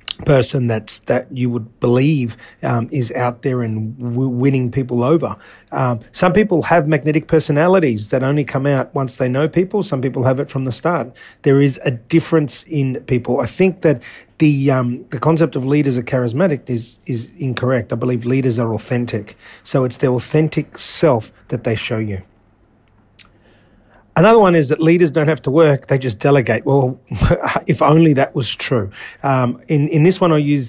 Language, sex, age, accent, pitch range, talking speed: English, male, 30-49, Australian, 120-155 Hz, 185 wpm